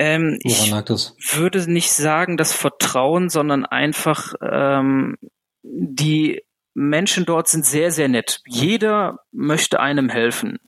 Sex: male